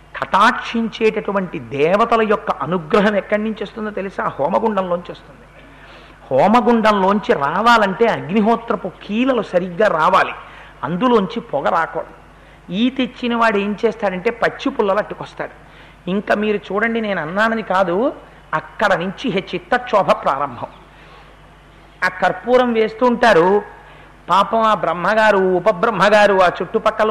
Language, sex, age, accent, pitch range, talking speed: Telugu, male, 50-69, native, 195-230 Hz, 110 wpm